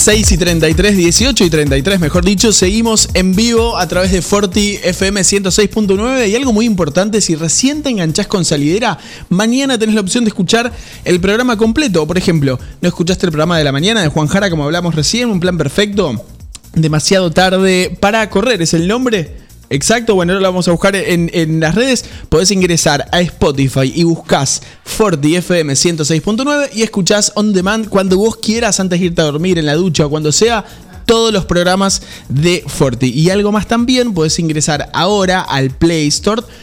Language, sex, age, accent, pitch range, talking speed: Spanish, male, 20-39, Argentinian, 165-215 Hz, 190 wpm